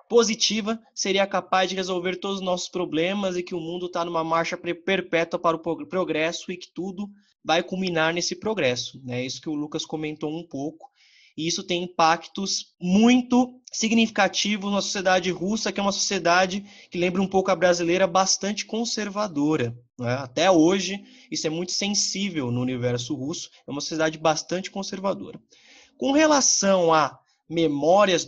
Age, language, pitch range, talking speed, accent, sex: 20-39, Portuguese, 150-195 Hz, 160 wpm, Brazilian, male